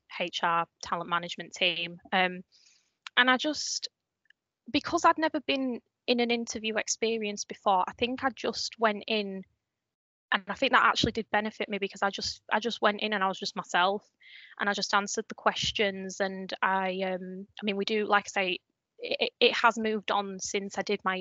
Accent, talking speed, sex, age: British, 190 wpm, female, 10-29